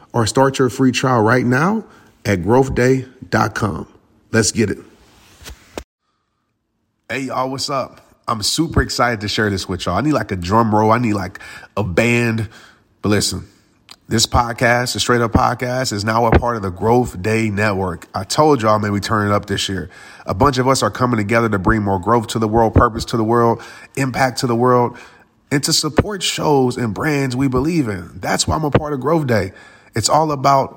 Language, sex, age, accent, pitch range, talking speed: English, male, 30-49, American, 105-135 Hz, 200 wpm